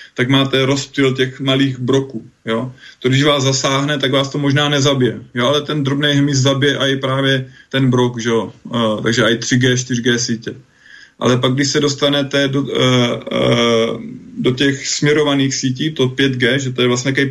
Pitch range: 125-135 Hz